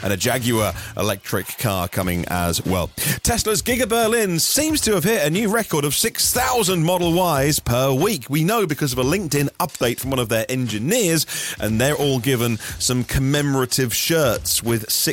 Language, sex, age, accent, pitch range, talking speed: English, male, 30-49, British, 105-150 Hz, 175 wpm